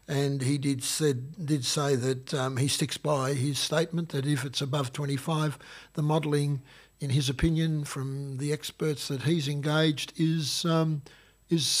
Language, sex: English, male